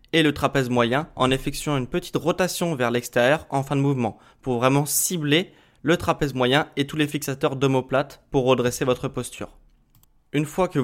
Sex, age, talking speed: male, 20-39, 185 wpm